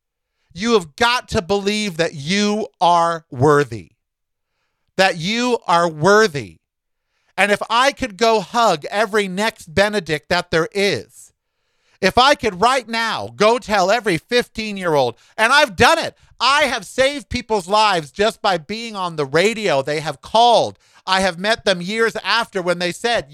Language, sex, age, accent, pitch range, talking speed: English, male, 50-69, American, 170-245 Hz, 155 wpm